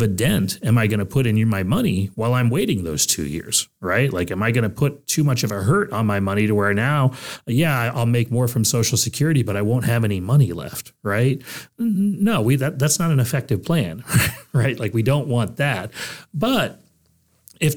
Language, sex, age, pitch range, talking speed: English, male, 30-49, 100-135 Hz, 220 wpm